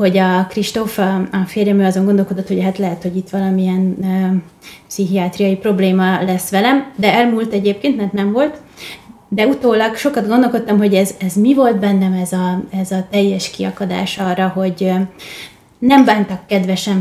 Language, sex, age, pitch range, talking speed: Hungarian, female, 20-39, 185-205 Hz, 160 wpm